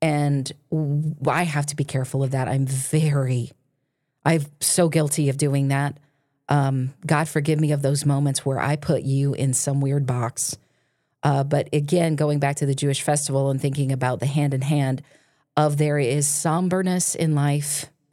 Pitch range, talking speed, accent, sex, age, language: 135-150 Hz, 175 wpm, American, female, 40-59, English